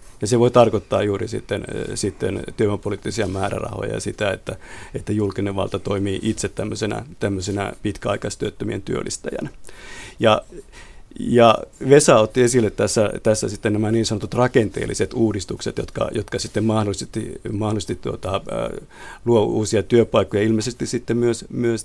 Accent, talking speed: native, 125 wpm